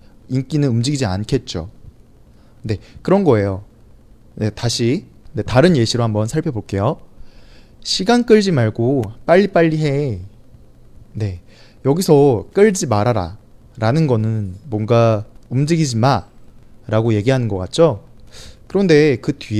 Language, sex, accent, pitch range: Chinese, male, Korean, 110-150 Hz